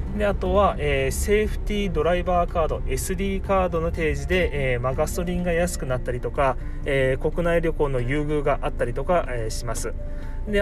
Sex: male